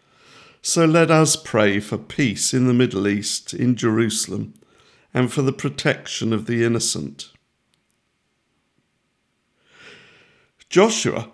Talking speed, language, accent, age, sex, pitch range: 105 wpm, English, British, 50-69, male, 115-155 Hz